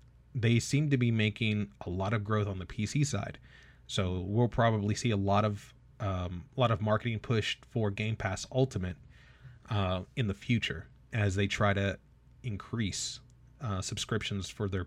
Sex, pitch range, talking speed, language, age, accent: male, 105-130 Hz, 175 wpm, English, 30-49, American